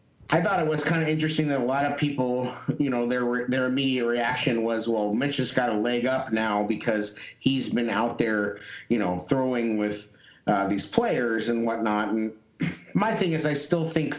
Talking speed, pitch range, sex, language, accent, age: 205 wpm, 115-140 Hz, male, English, American, 50-69